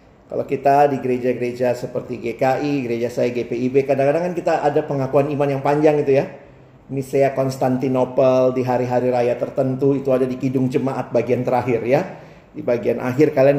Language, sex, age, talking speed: Indonesian, male, 40-59, 165 wpm